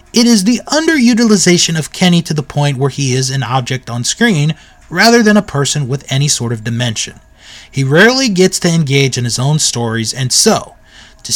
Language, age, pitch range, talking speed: English, 30-49, 130-190 Hz, 195 wpm